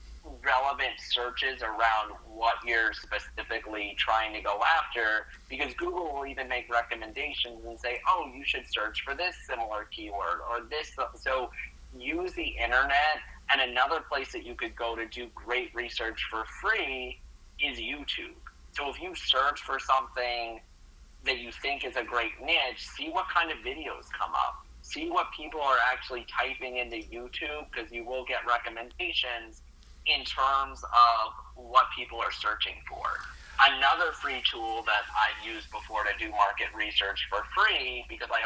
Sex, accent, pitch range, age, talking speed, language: male, American, 115-145 Hz, 30-49, 160 wpm, English